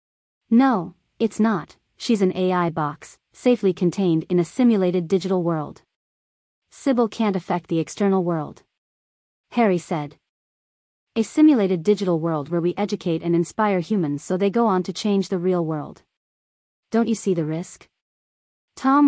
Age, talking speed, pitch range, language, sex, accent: 30-49, 150 wpm, 160-205 Hz, English, female, American